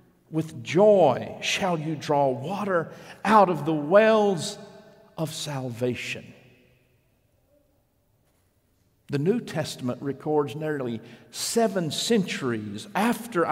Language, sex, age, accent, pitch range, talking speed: English, male, 50-69, American, 140-215 Hz, 90 wpm